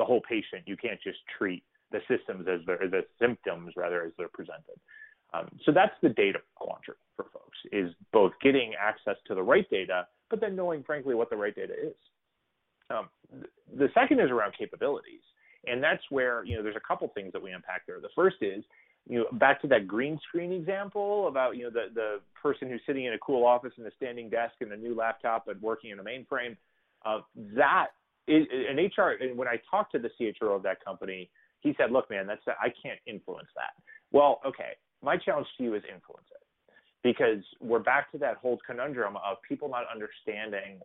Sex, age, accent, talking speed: male, 30-49, American, 205 wpm